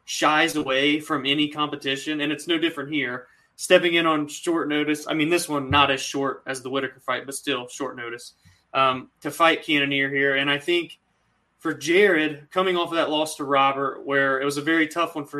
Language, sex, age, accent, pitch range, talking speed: English, male, 20-39, American, 140-170 Hz, 215 wpm